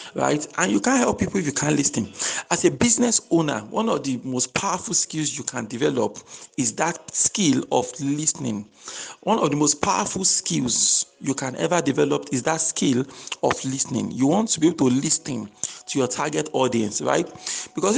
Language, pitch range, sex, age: English, 150-195 Hz, male, 50-69